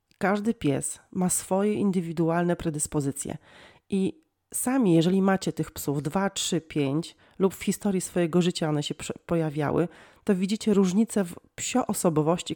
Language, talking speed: Polish, 135 wpm